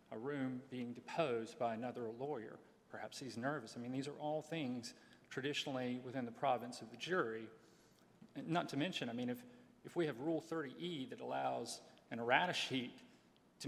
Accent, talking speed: American, 175 wpm